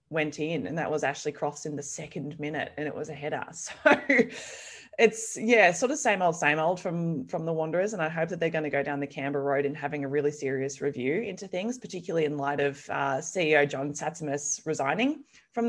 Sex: female